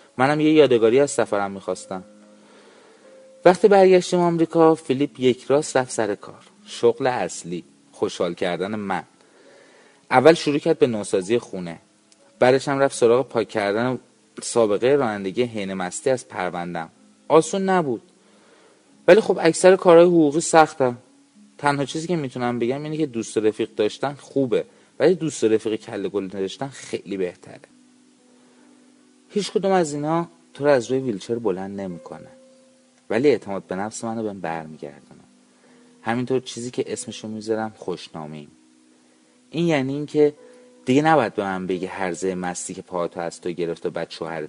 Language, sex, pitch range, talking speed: Persian, male, 105-175 Hz, 145 wpm